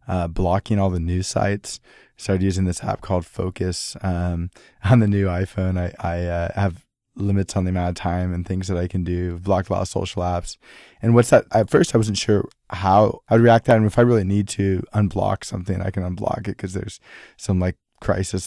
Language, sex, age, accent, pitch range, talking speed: English, male, 20-39, American, 95-110 Hz, 225 wpm